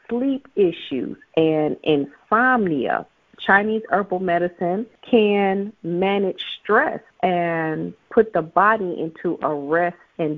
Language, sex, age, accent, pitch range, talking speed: English, female, 40-59, American, 155-220 Hz, 105 wpm